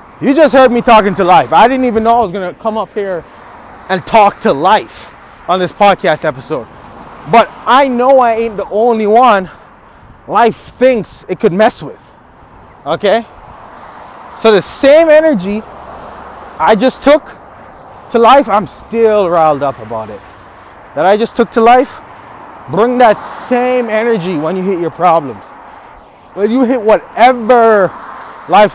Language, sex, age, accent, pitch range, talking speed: English, male, 20-39, American, 180-235 Hz, 155 wpm